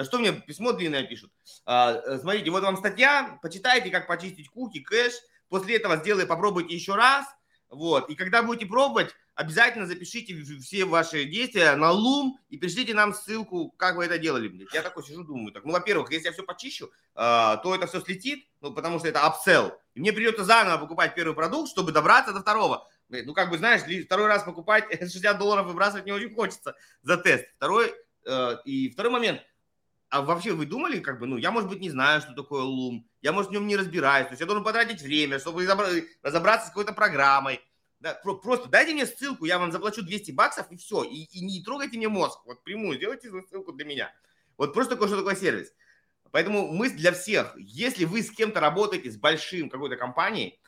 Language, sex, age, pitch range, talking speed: Russian, male, 30-49, 160-225 Hz, 195 wpm